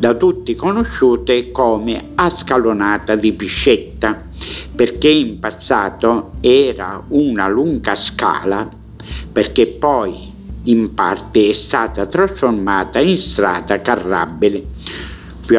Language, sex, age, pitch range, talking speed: Italian, male, 60-79, 110-145 Hz, 95 wpm